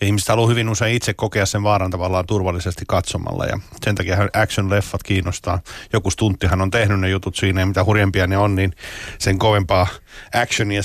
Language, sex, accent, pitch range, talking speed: Finnish, male, native, 95-110 Hz, 175 wpm